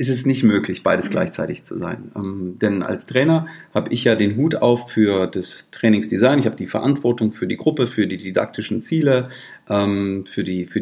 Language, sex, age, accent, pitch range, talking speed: German, male, 40-59, German, 100-125 Hz, 200 wpm